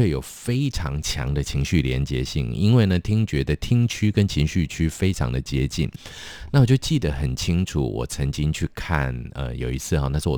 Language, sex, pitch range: Chinese, male, 70-100 Hz